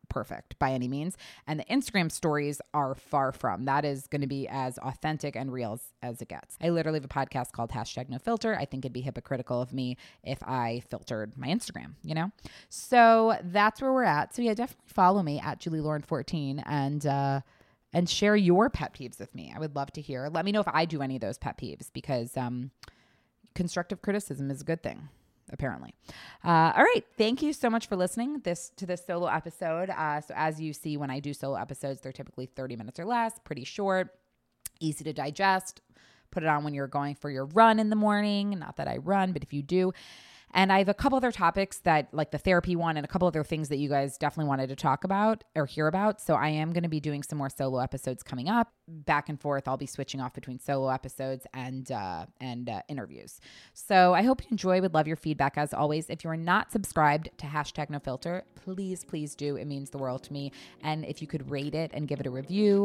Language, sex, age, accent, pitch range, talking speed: English, female, 20-39, American, 135-185 Hz, 235 wpm